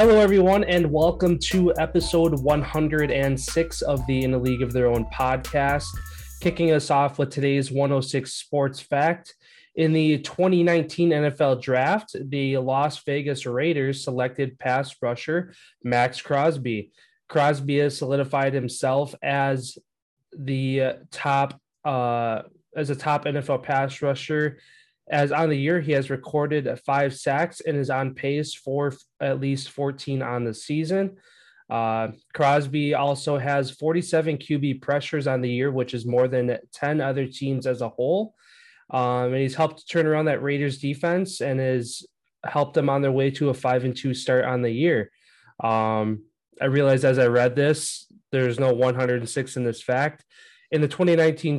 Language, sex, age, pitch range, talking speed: English, male, 20-39, 130-155 Hz, 165 wpm